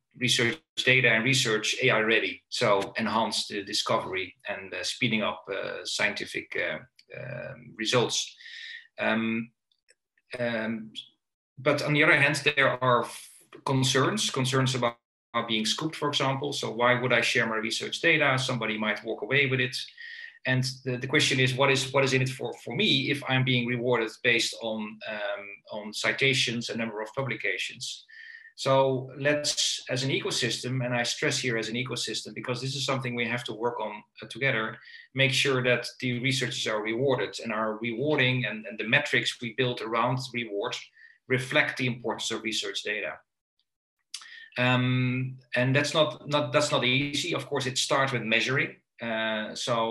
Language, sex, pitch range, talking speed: English, male, 115-140 Hz, 165 wpm